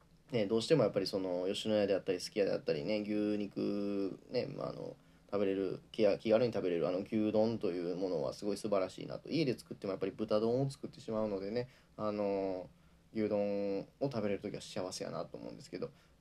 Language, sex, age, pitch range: Japanese, male, 10-29, 105-145 Hz